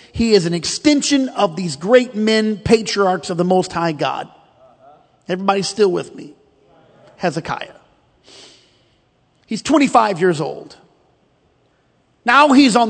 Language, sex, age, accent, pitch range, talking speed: English, male, 40-59, American, 185-275 Hz, 120 wpm